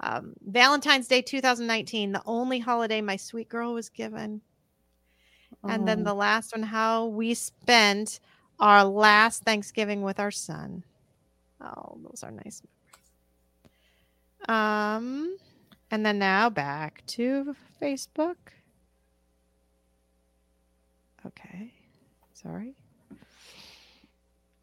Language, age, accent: English, 40-59, American